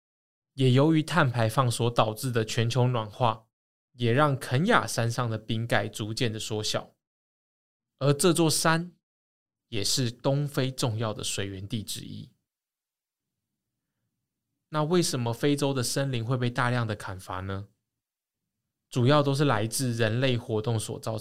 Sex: male